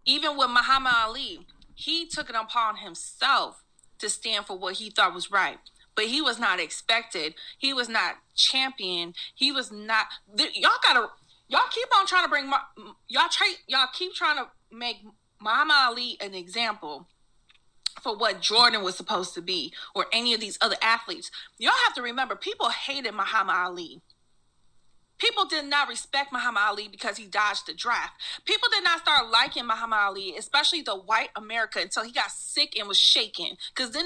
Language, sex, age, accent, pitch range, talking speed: English, female, 30-49, American, 215-310 Hz, 175 wpm